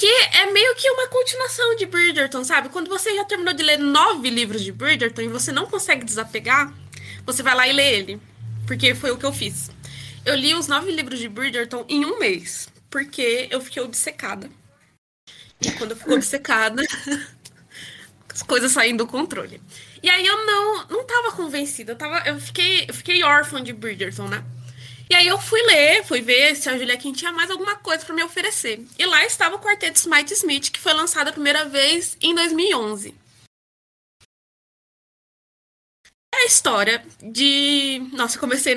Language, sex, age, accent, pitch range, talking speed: Portuguese, female, 20-39, Brazilian, 250-355 Hz, 175 wpm